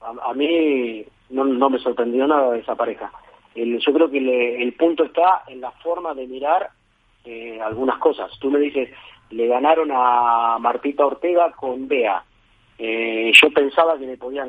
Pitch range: 115-145 Hz